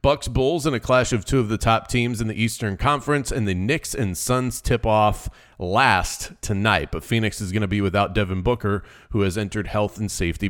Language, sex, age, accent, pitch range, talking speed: English, male, 30-49, American, 105-130 Hz, 225 wpm